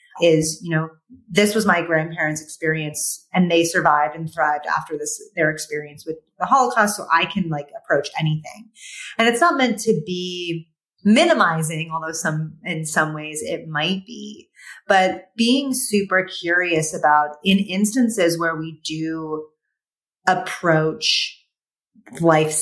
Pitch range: 160-210 Hz